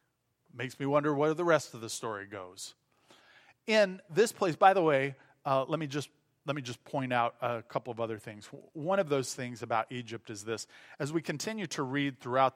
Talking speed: 210 wpm